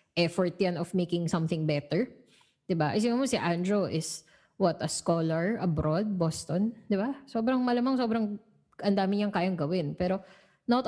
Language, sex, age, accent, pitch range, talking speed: English, female, 20-39, Filipino, 160-195 Hz, 155 wpm